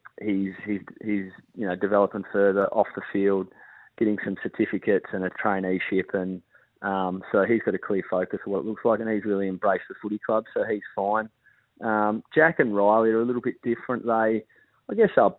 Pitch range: 100-120 Hz